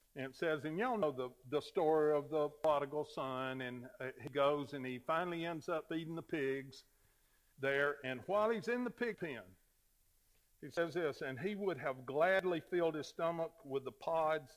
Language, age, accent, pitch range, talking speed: English, 50-69, American, 110-165 Hz, 195 wpm